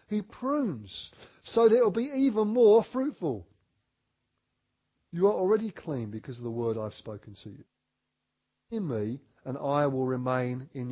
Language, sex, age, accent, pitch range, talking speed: English, male, 40-59, British, 120-200 Hz, 160 wpm